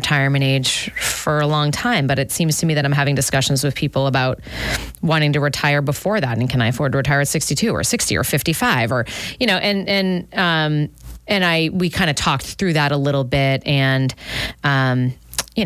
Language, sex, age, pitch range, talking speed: English, female, 30-49, 140-170 Hz, 210 wpm